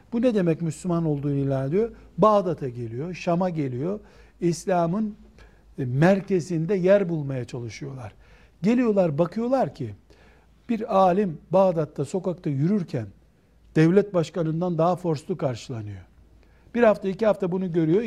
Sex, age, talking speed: male, 60-79, 115 wpm